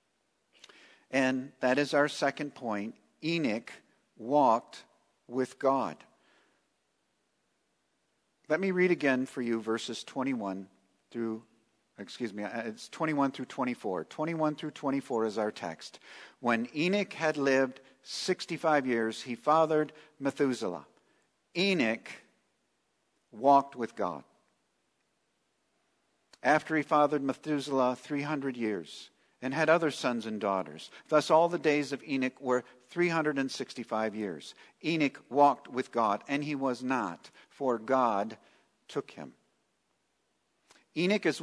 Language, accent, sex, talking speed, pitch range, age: English, American, male, 115 wpm, 125-155 Hz, 50-69